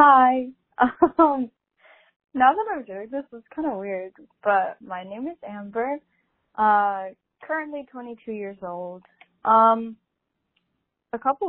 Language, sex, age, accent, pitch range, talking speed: English, female, 10-29, American, 190-255 Hz, 130 wpm